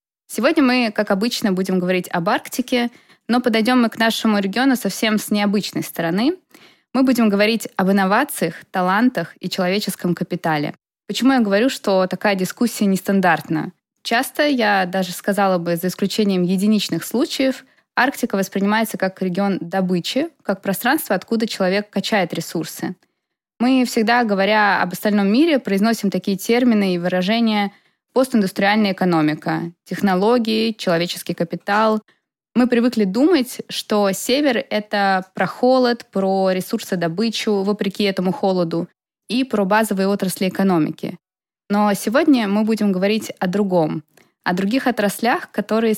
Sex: female